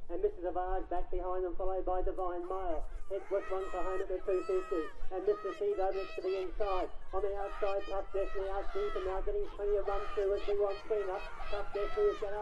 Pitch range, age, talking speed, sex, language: 180-220 Hz, 50-69, 220 wpm, male, English